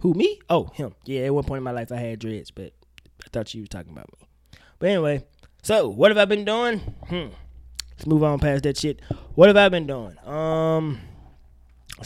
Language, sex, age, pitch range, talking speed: English, male, 20-39, 105-170 Hz, 220 wpm